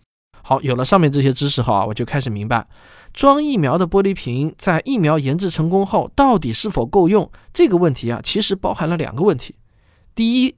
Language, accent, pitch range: Chinese, native, 120-180 Hz